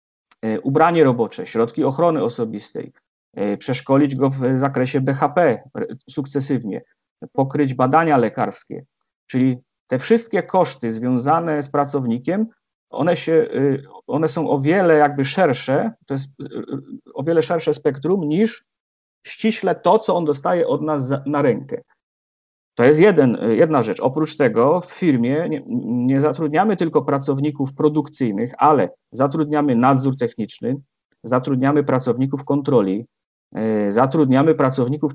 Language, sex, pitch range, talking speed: Polish, male, 125-155 Hz, 115 wpm